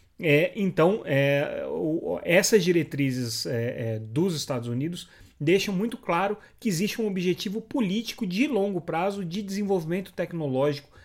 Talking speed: 110 wpm